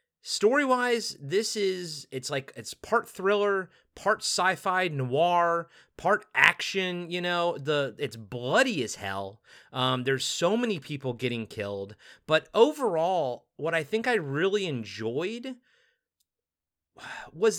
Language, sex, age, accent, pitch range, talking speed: English, male, 30-49, American, 140-195 Hz, 125 wpm